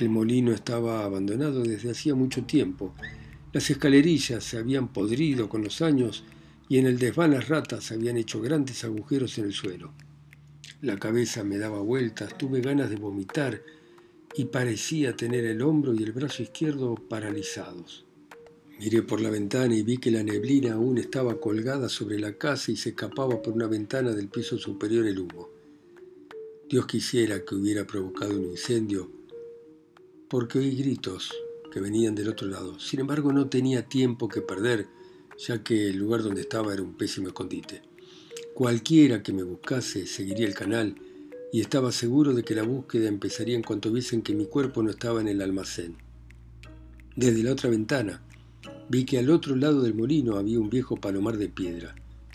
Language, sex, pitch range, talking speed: Spanish, male, 105-140 Hz, 170 wpm